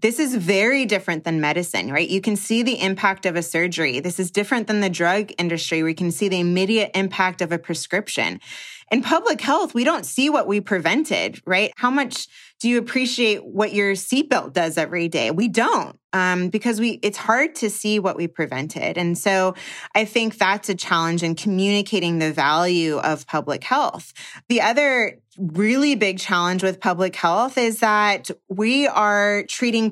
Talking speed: 185 wpm